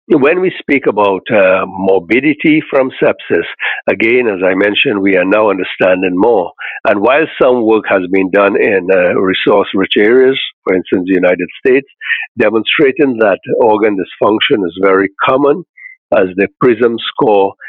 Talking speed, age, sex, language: 150 wpm, 60-79, male, English